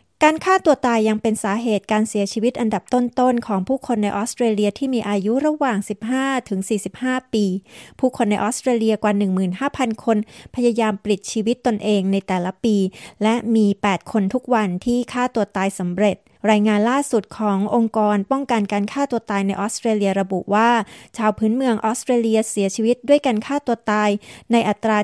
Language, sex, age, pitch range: Thai, female, 30-49, 200-240 Hz